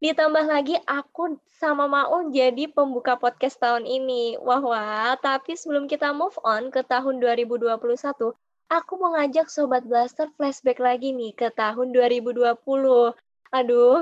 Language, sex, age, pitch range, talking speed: Indonesian, female, 20-39, 235-295 Hz, 135 wpm